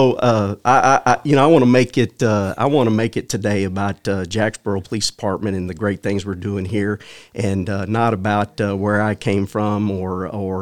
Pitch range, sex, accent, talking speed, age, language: 100-120 Hz, male, American, 230 wpm, 50-69, English